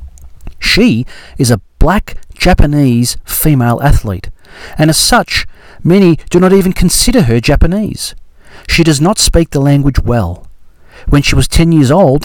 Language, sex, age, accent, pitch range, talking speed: Italian, male, 40-59, Australian, 95-155 Hz, 145 wpm